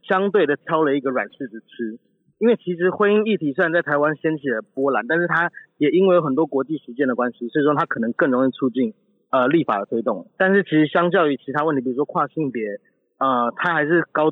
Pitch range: 135-185 Hz